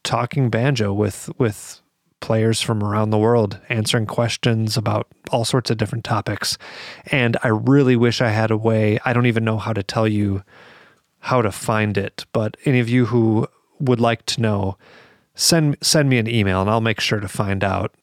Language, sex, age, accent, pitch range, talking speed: English, male, 30-49, American, 105-120 Hz, 195 wpm